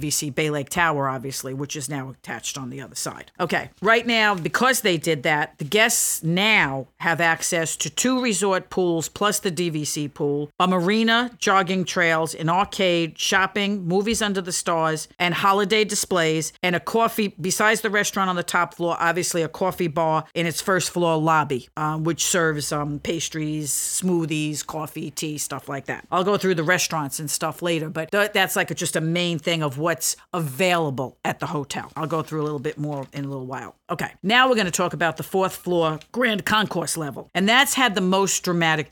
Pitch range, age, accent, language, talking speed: 155-195 Hz, 50-69, American, English, 200 wpm